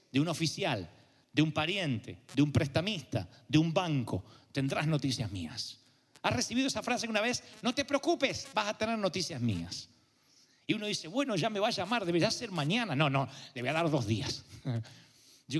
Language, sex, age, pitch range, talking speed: Spanish, male, 40-59, 130-195 Hz, 190 wpm